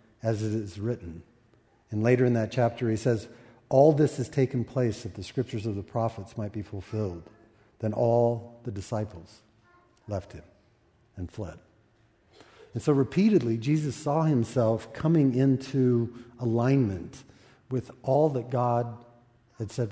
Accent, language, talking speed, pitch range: American, English, 145 wpm, 110-130 Hz